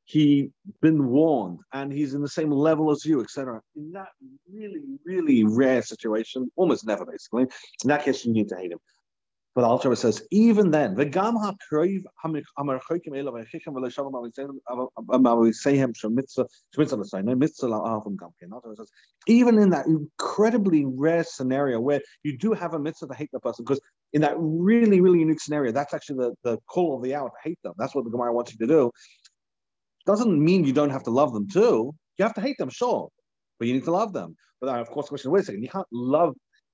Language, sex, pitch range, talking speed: English, male, 125-175 Hz, 180 wpm